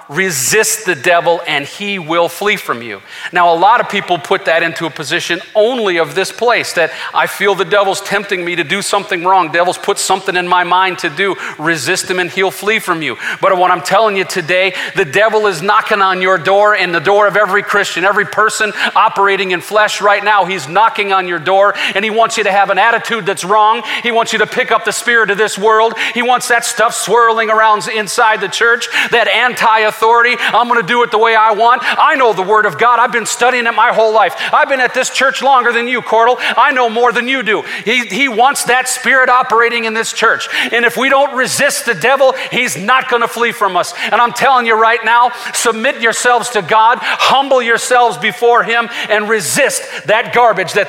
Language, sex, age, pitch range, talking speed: English, male, 40-59, 190-235 Hz, 230 wpm